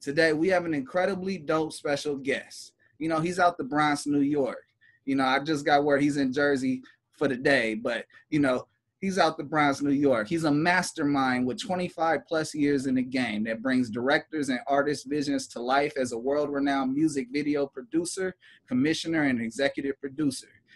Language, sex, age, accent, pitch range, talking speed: English, male, 20-39, American, 145-195 Hz, 190 wpm